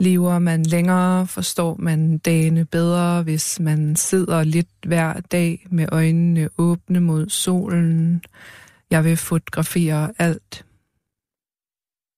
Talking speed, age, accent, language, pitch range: 110 wpm, 20-39, native, Danish, 160-180 Hz